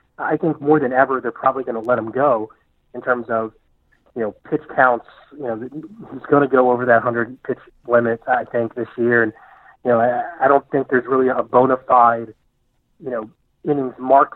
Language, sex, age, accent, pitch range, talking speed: English, male, 40-59, American, 115-125 Hz, 210 wpm